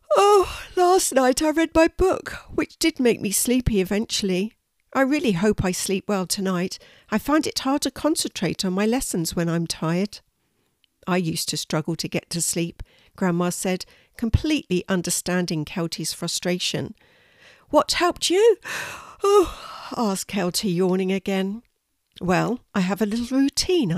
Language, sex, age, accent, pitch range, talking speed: English, female, 50-69, British, 170-265 Hz, 150 wpm